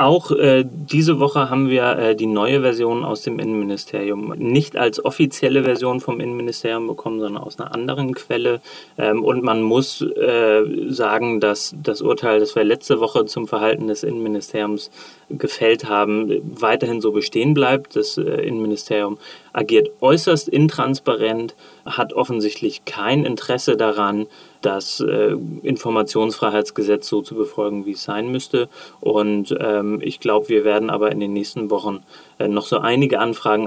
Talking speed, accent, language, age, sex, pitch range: 150 wpm, German, German, 30-49, male, 105-125 Hz